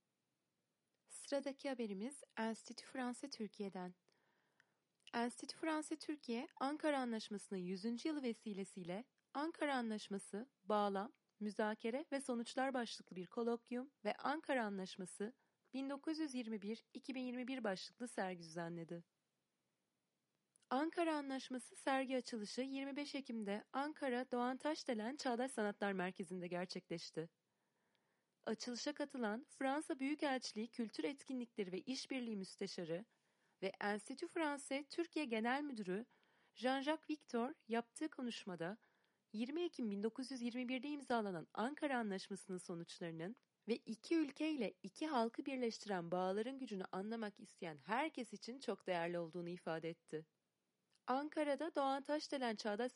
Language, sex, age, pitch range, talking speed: Turkish, female, 30-49, 200-270 Hz, 100 wpm